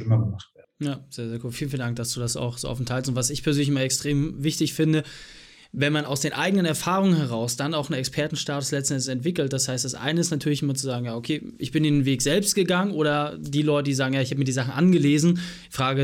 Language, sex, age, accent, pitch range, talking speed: German, male, 20-39, German, 130-175 Hz, 245 wpm